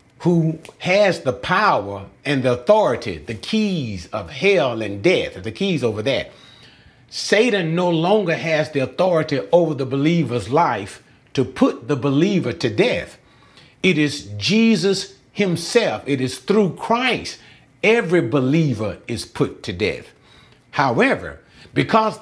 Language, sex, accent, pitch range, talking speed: English, male, American, 140-205 Hz, 130 wpm